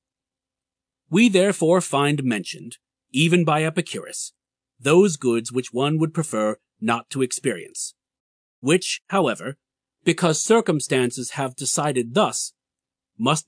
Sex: male